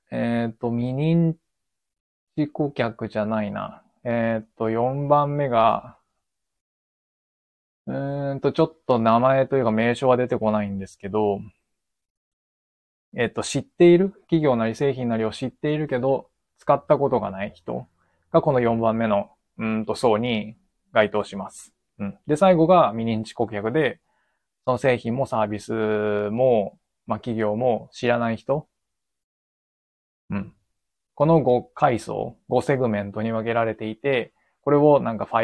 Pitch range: 105-135 Hz